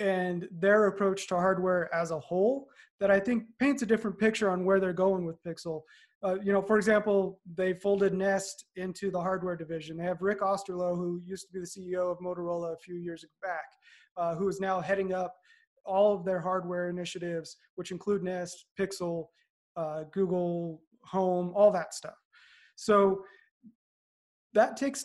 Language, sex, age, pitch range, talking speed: English, male, 20-39, 175-200 Hz, 175 wpm